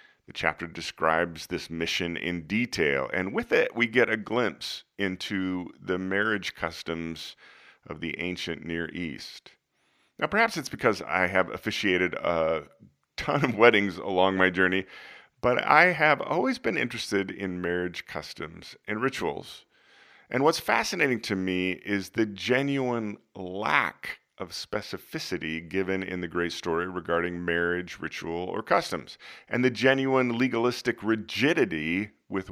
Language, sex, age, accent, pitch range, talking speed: English, male, 40-59, American, 85-100 Hz, 140 wpm